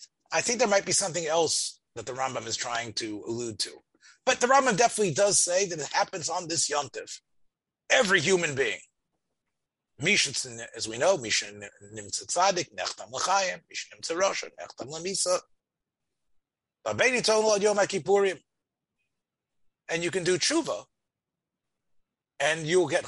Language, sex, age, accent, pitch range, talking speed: English, male, 30-49, American, 160-230 Hz, 135 wpm